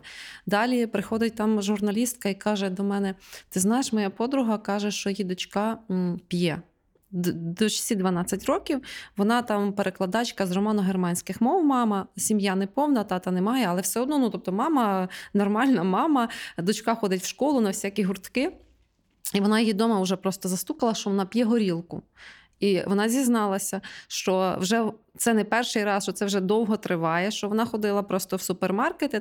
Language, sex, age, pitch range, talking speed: Ukrainian, female, 20-39, 195-240 Hz, 160 wpm